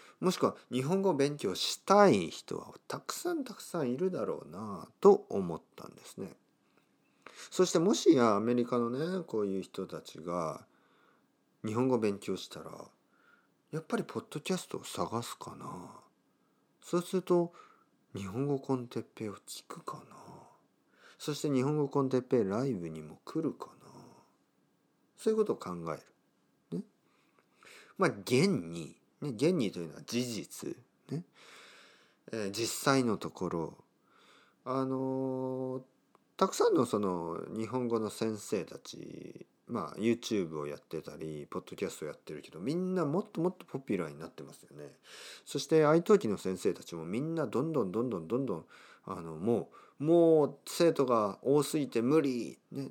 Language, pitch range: Japanese, 110-160 Hz